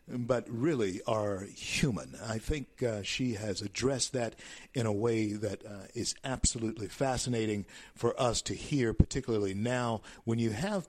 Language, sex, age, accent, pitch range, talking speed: English, male, 50-69, American, 110-135 Hz, 155 wpm